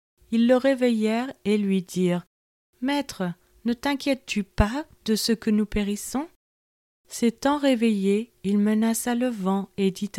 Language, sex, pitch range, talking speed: French, female, 185-230 Hz, 145 wpm